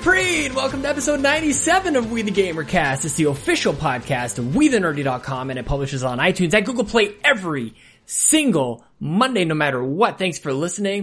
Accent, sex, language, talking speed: American, male, English, 180 wpm